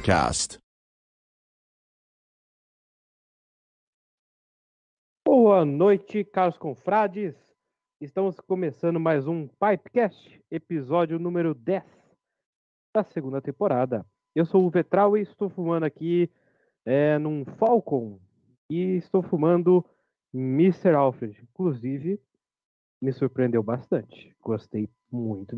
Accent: Brazilian